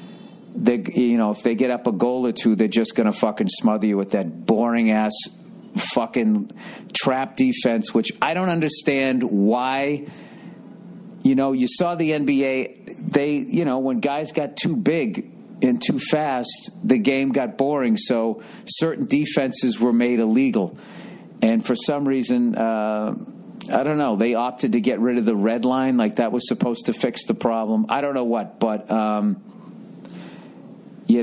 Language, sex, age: English, male, 50-69